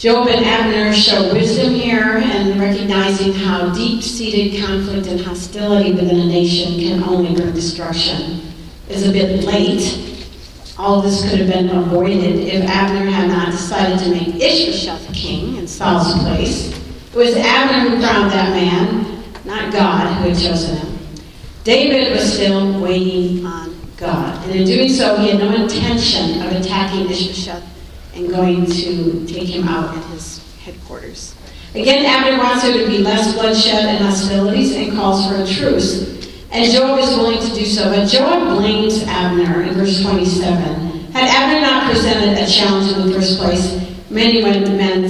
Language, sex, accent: English, female, American